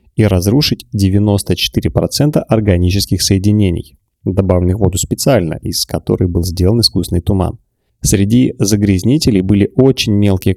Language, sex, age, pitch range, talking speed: Russian, male, 30-49, 90-115 Hz, 115 wpm